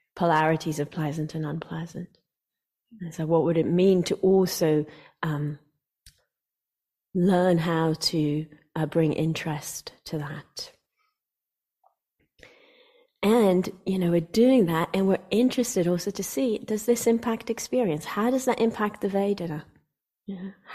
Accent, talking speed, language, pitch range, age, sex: British, 135 wpm, English, 160-195 Hz, 30-49, female